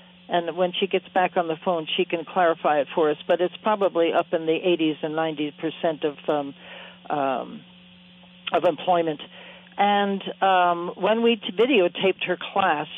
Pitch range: 160-190 Hz